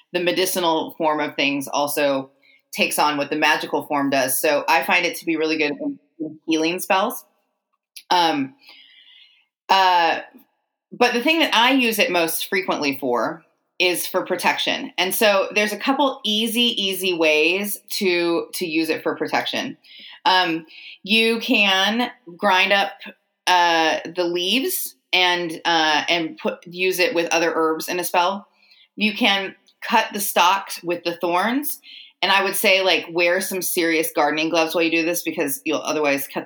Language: English